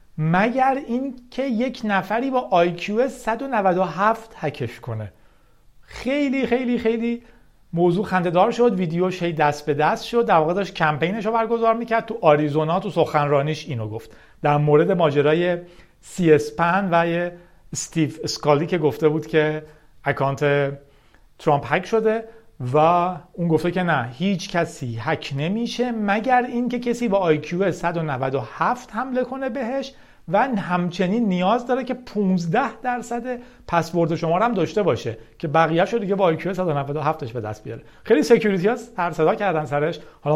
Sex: male